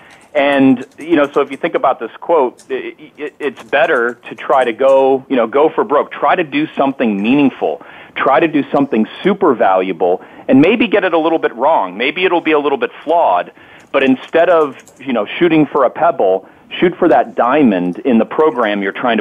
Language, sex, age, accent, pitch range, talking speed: English, male, 40-59, American, 110-155 Hz, 205 wpm